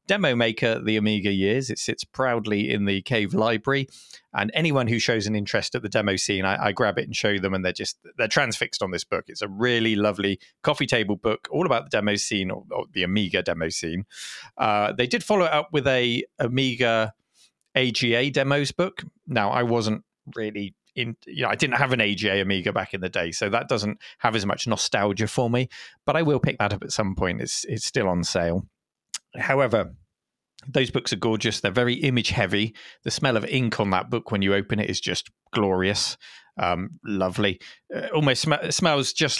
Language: English